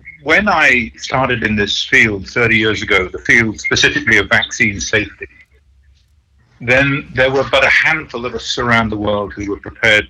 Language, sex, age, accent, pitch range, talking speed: English, male, 50-69, British, 105-125 Hz, 170 wpm